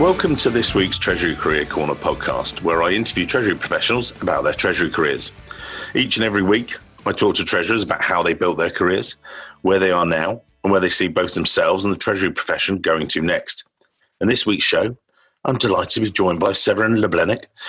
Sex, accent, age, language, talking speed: male, British, 50-69, English, 205 wpm